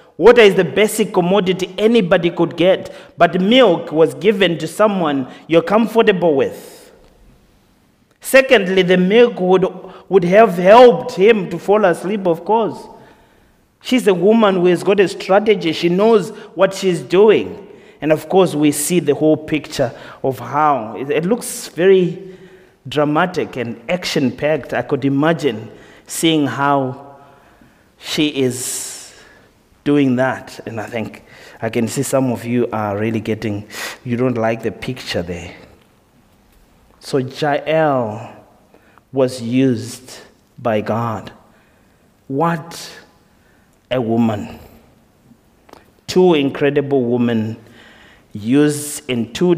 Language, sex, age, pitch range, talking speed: English, male, 30-49, 125-190 Hz, 120 wpm